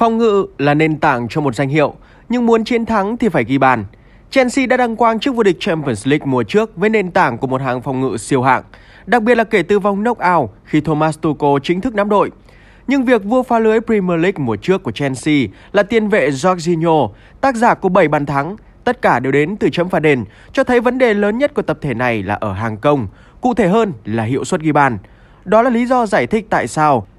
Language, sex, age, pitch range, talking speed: Vietnamese, male, 20-39, 140-225 Hz, 245 wpm